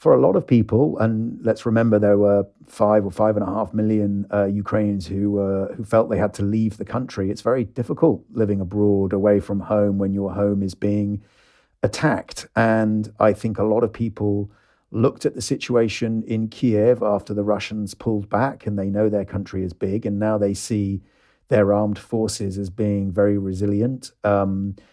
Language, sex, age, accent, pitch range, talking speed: English, male, 40-59, British, 100-110 Hz, 195 wpm